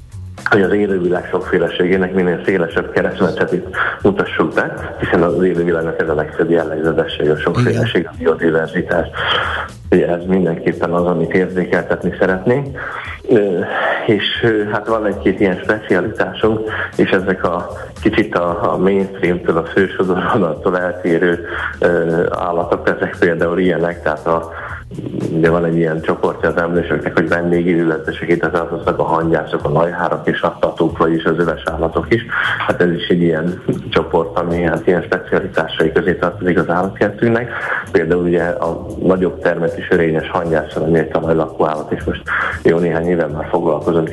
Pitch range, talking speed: 80-95 Hz, 140 wpm